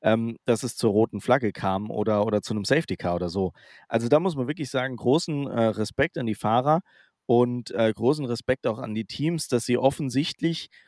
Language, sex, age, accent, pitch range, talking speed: German, male, 40-59, German, 110-135 Hz, 205 wpm